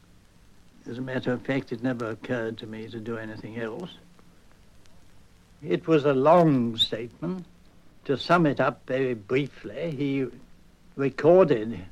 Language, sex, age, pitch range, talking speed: English, male, 70-89, 95-135 Hz, 135 wpm